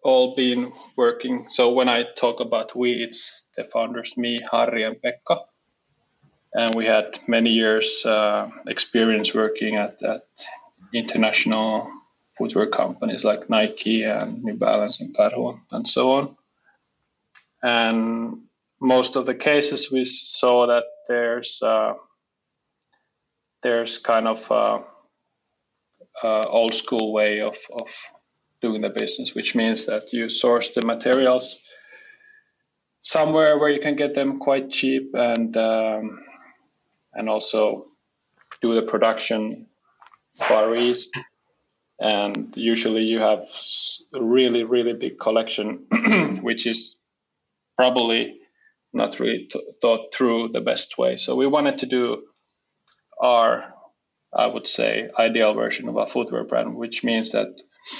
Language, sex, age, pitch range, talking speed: English, male, 20-39, 115-135 Hz, 130 wpm